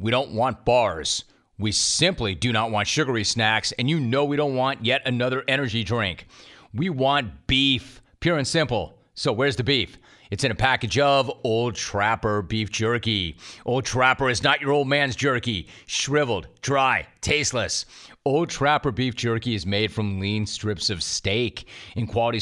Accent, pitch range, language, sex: American, 110-135 Hz, English, male